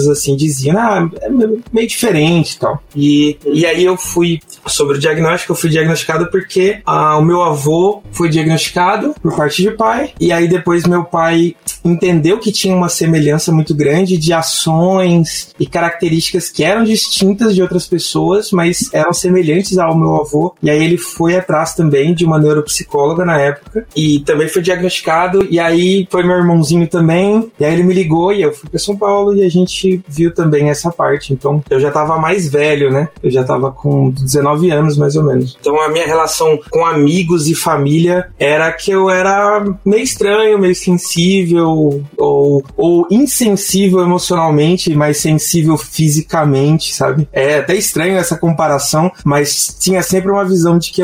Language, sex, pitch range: Portuguese, male, 150-185 Hz